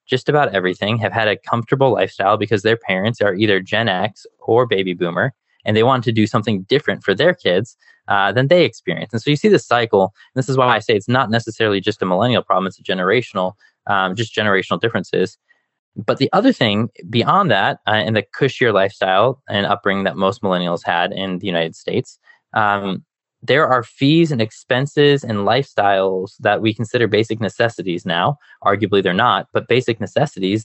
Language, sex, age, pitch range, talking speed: English, male, 20-39, 100-125 Hz, 190 wpm